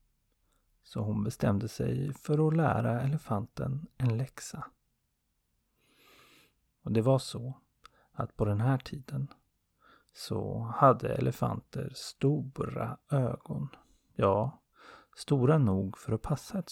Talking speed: 110 wpm